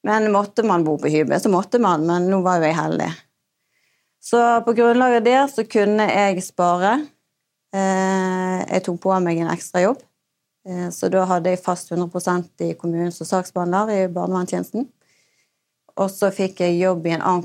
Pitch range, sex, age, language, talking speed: 170-200 Hz, female, 30-49, English, 175 wpm